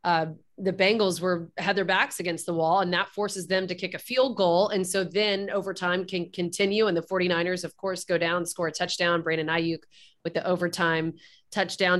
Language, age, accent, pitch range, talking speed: English, 30-49, American, 175-205 Hz, 205 wpm